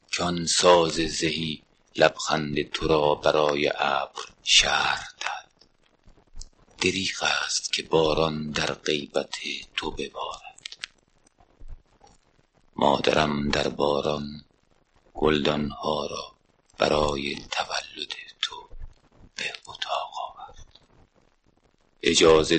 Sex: male